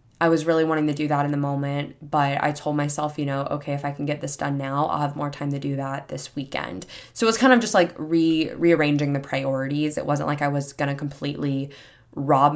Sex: female